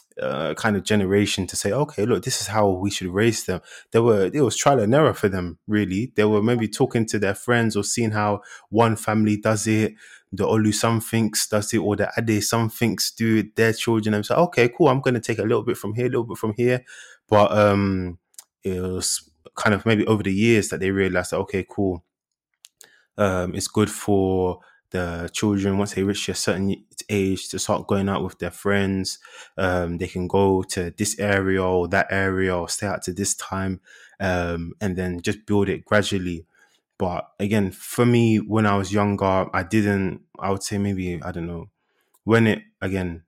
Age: 20-39